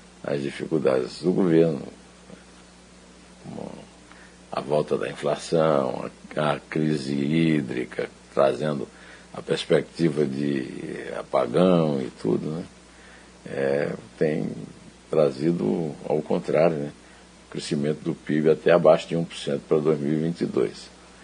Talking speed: 100 wpm